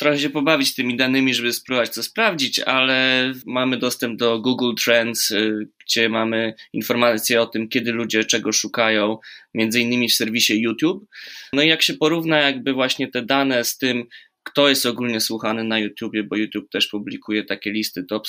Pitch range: 110-135 Hz